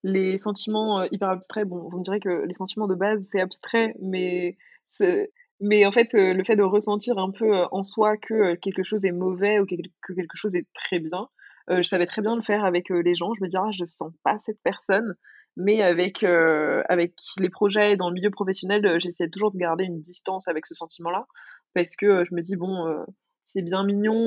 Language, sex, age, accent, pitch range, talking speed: French, female, 20-39, French, 175-205 Hz, 220 wpm